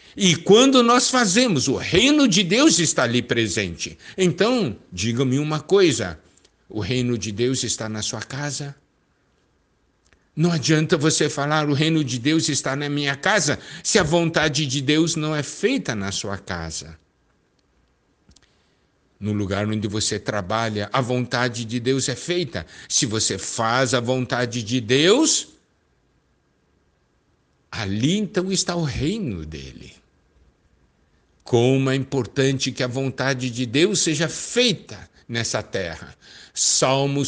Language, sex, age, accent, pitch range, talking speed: Portuguese, male, 60-79, Brazilian, 110-160 Hz, 135 wpm